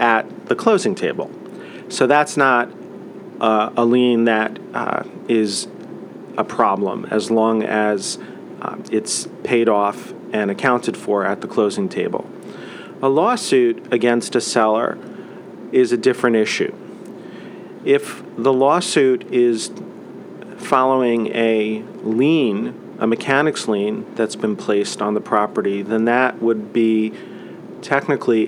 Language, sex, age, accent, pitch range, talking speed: English, male, 40-59, American, 110-130 Hz, 125 wpm